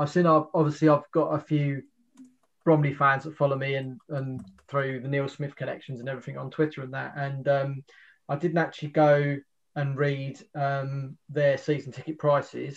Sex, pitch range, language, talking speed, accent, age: male, 140-160 Hz, English, 180 wpm, British, 20-39